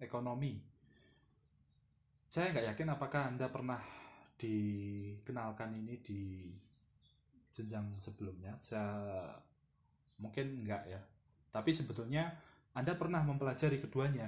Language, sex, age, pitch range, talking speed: Indonesian, male, 20-39, 110-145 Hz, 90 wpm